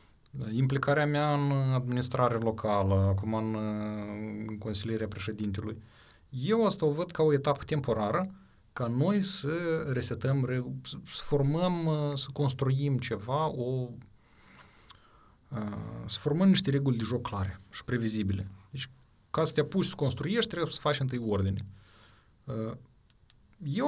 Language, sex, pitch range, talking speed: Romanian, male, 110-145 Hz, 125 wpm